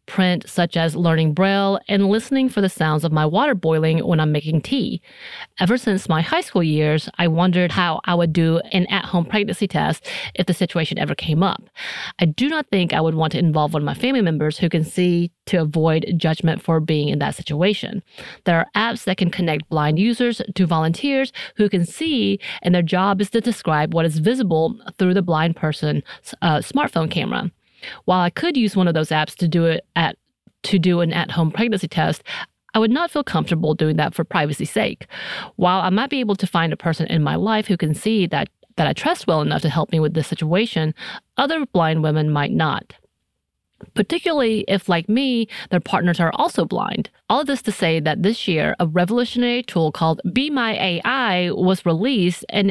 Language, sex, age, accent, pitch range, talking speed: English, female, 30-49, American, 160-215 Hz, 205 wpm